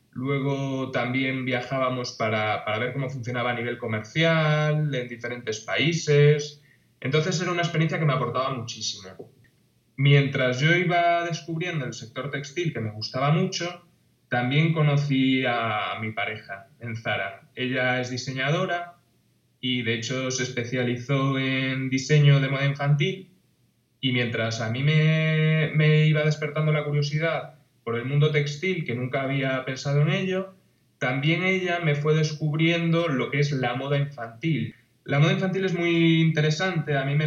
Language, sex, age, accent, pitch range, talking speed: Italian, male, 20-39, Spanish, 125-155 Hz, 150 wpm